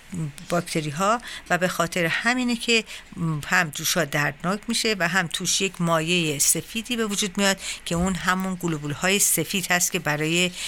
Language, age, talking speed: Persian, 50-69, 155 wpm